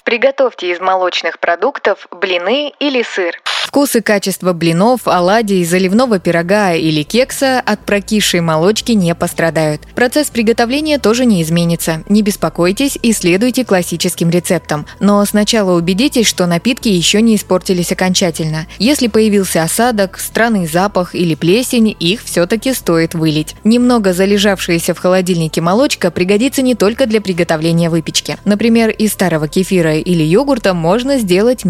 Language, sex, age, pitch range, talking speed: Russian, female, 20-39, 170-230 Hz, 130 wpm